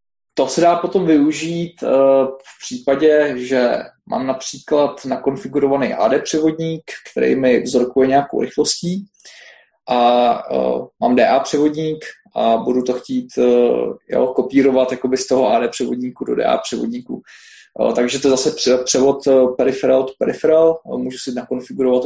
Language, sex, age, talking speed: Czech, male, 20-39, 125 wpm